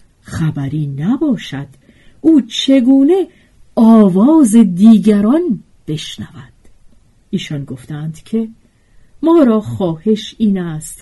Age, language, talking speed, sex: 50-69, Persian, 80 wpm, female